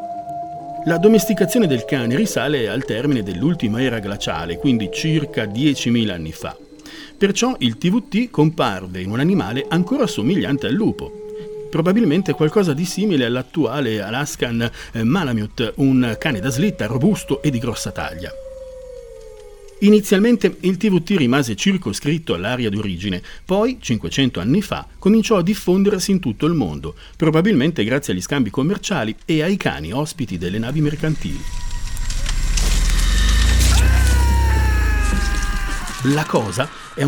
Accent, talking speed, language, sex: native, 120 wpm, Italian, male